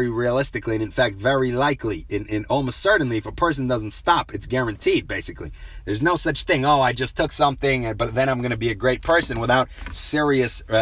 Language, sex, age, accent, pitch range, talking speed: English, male, 30-49, American, 115-150 Hz, 205 wpm